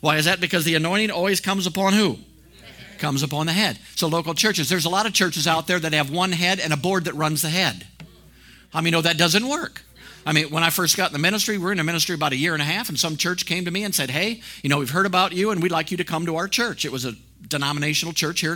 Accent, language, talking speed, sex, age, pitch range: American, English, 300 wpm, male, 50-69, 130-180 Hz